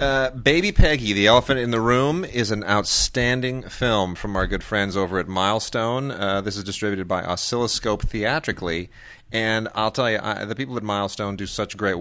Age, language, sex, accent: 30-49, English, male, American